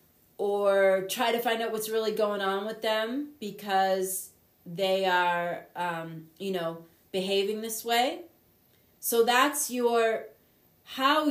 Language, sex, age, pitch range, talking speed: English, female, 30-49, 175-245 Hz, 125 wpm